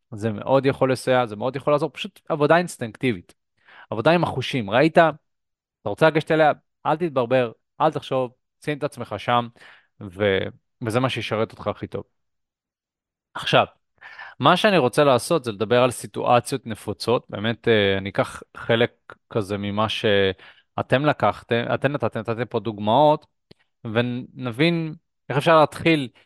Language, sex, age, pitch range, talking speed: Hebrew, male, 20-39, 110-145 Hz, 140 wpm